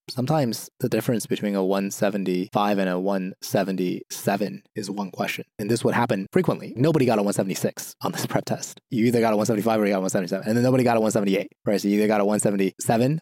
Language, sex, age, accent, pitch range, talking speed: English, male, 20-39, American, 95-125 Hz, 220 wpm